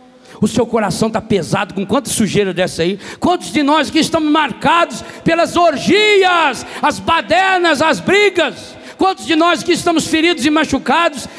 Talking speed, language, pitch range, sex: 160 wpm, Portuguese, 220-330 Hz, male